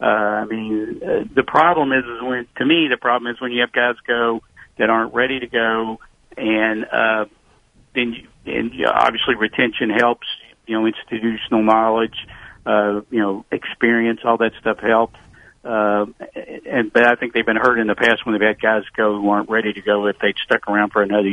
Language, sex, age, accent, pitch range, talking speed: English, male, 50-69, American, 105-125 Hz, 200 wpm